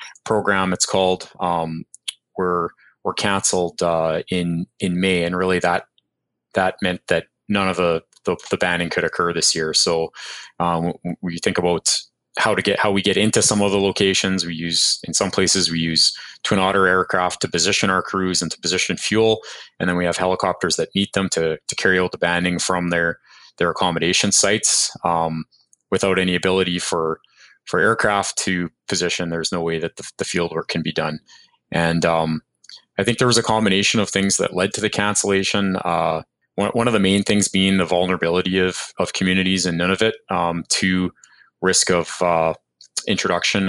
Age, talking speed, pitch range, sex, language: 20-39, 185 wpm, 85-95 Hz, male, English